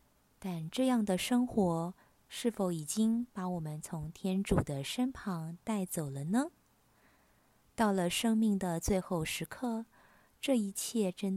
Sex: female